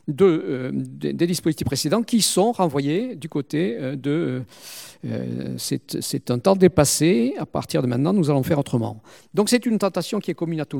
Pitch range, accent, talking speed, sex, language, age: 125-170 Hz, French, 190 wpm, male, French, 50-69